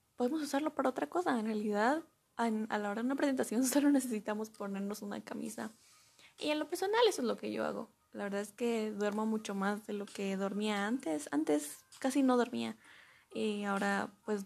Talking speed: 195 wpm